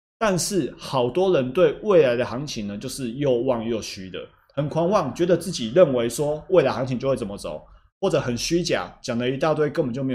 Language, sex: Chinese, male